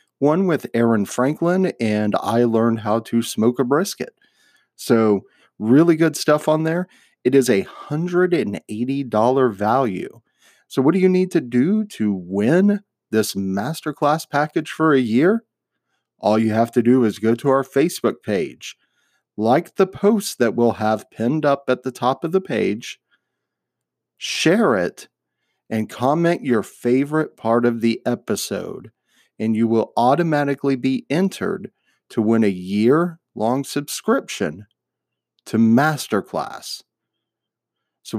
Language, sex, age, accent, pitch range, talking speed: English, male, 40-59, American, 115-155 Hz, 135 wpm